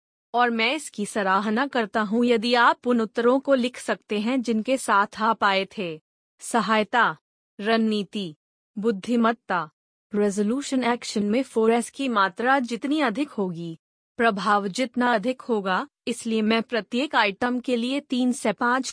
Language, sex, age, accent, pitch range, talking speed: Hindi, female, 20-39, native, 210-250 Hz, 140 wpm